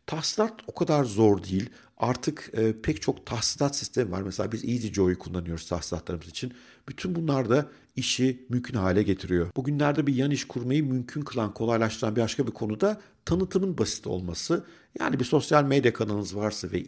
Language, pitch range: Turkish, 100-130 Hz